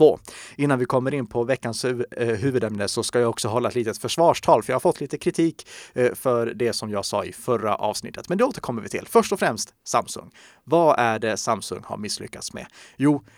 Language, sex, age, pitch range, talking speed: Swedish, male, 30-49, 115-140 Hz, 205 wpm